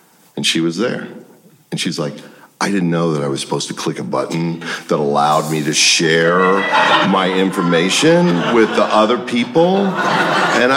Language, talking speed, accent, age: English, 165 wpm, American, 50-69